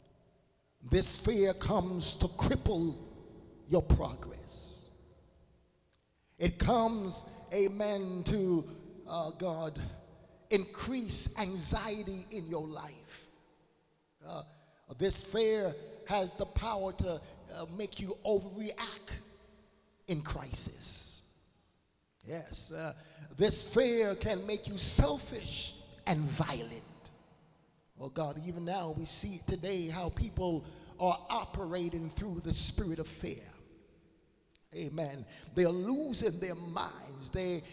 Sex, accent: male, American